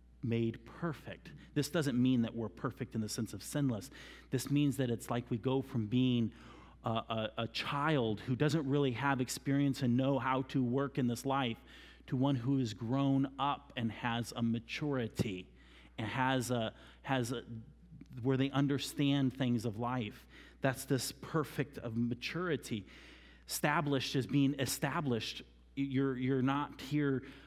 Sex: male